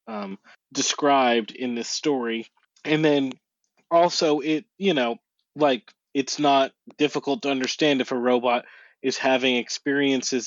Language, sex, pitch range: English, male, 120-150 Hz